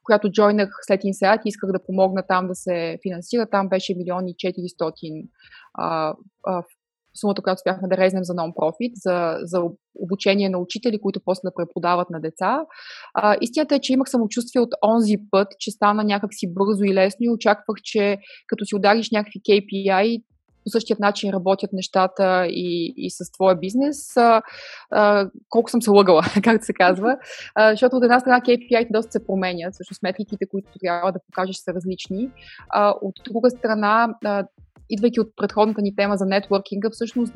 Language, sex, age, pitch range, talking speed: Bulgarian, female, 20-39, 190-220 Hz, 170 wpm